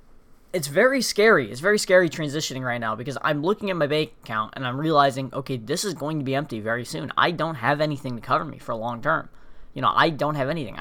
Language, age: English, 10-29